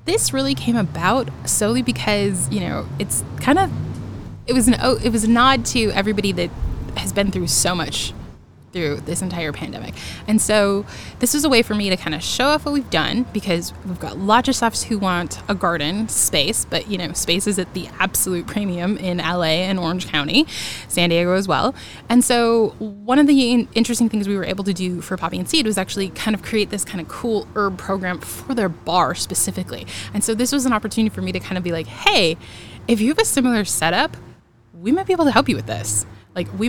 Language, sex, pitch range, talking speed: English, female, 175-225 Hz, 225 wpm